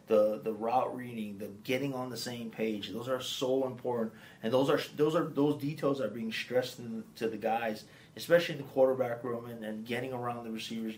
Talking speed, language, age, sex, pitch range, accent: 220 wpm, English, 30-49, male, 110-130 Hz, American